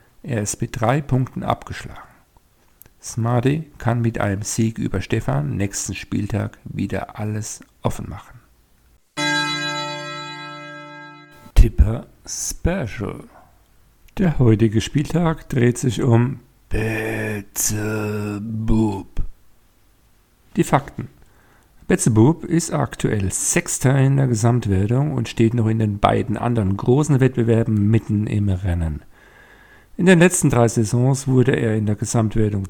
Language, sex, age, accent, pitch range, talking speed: German, male, 50-69, German, 105-135 Hz, 110 wpm